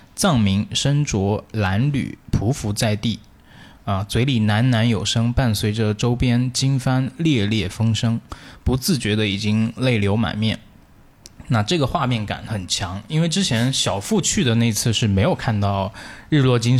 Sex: male